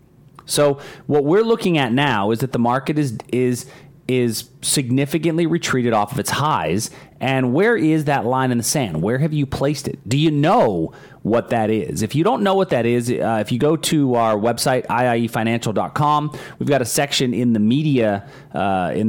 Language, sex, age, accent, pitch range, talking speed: English, male, 30-49, American, 110-145 Hz, 195 wpm